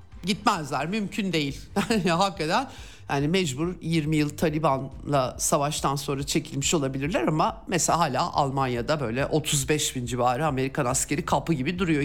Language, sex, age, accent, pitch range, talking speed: Turkish, male, 50-69, native, 155-225 Hz, 130 wpm